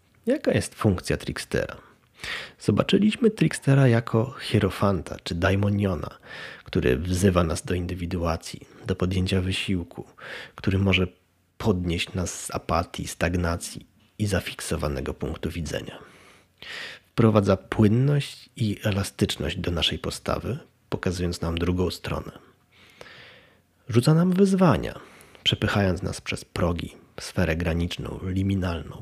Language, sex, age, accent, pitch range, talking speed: Polish, male, 30-49, native, 85-110 Hz, 105 wpm